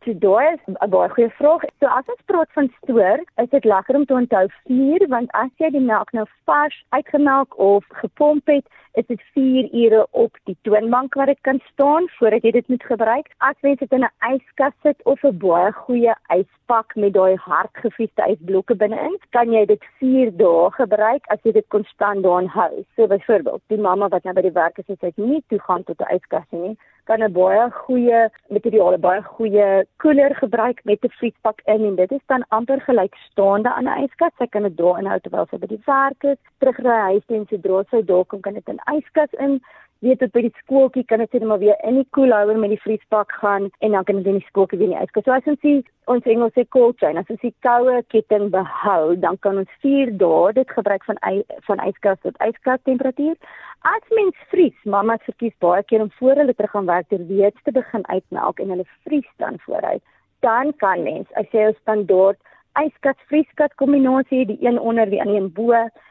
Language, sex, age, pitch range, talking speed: English, female, 30-49, 205-270 Hz, 220 wpm